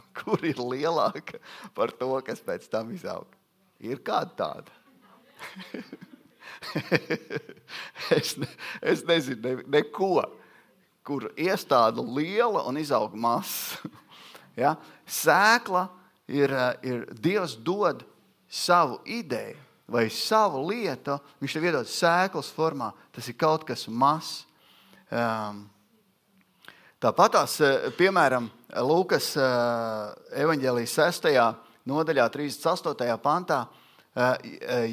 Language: Portuguese